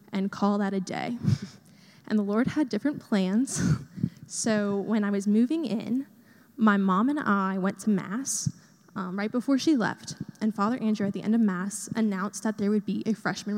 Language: English